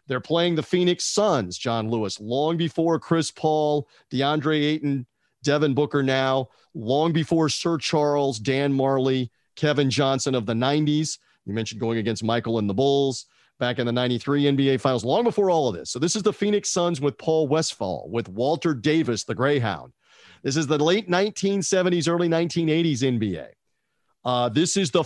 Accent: American